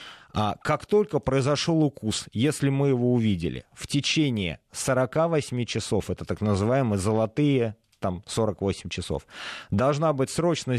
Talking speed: 140 wpm